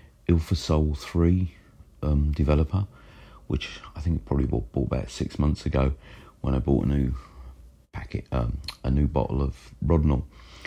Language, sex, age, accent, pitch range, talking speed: English, male, 40-59, British, 65-80 Hz, 150 wpm